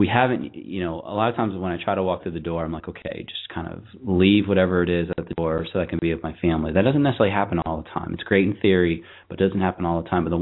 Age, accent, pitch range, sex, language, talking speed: 30-49, American, 85-95 Hz, male, English, 325 wpm